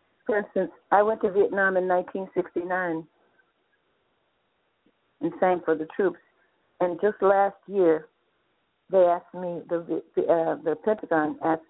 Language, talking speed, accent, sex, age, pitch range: English, 130 wpm, American, female, 60-79, 165-190 Hz